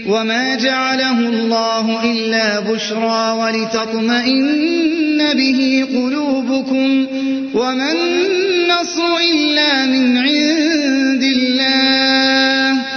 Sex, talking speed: male, 65 wpm